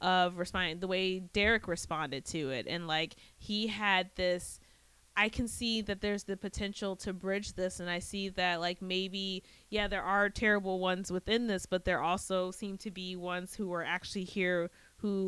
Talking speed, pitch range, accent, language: 190 wpm, 175-200 Hz, American, English